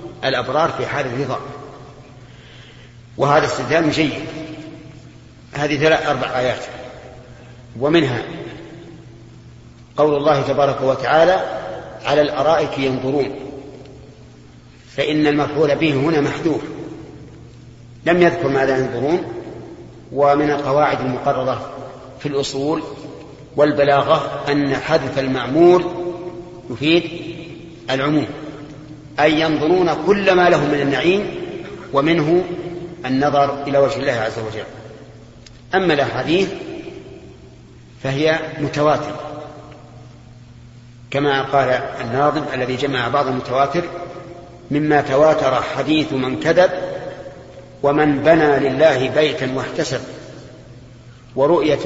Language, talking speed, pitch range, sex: Arabic, 85 wpm, 130-155 Hz, male